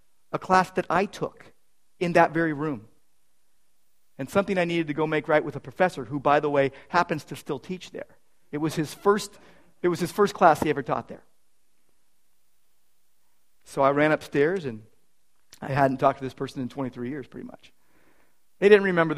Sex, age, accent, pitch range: male, 50-69, American, 140-190 Hz